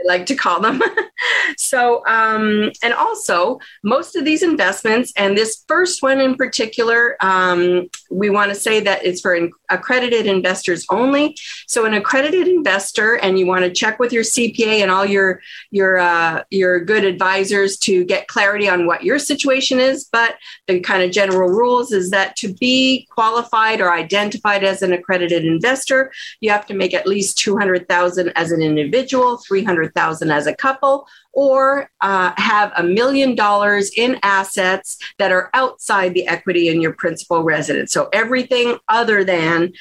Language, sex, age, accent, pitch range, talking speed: English, female, 40-59, American, 185-235 Hz, 170 wpm